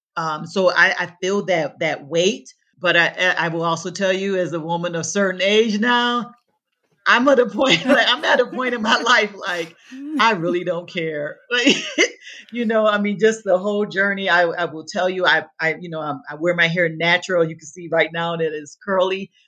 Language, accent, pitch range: English, American, 165-205 Hz